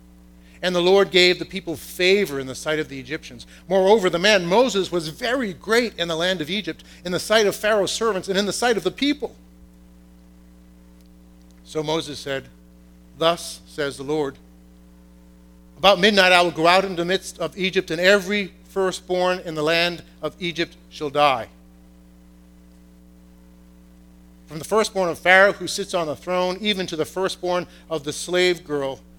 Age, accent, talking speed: 50-69, American, 175 wpm